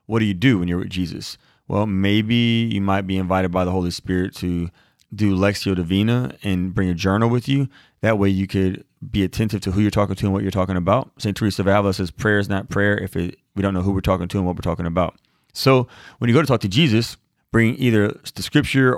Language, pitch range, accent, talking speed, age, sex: English, 95-110 Hz, American, 245 wpm, 30-49, male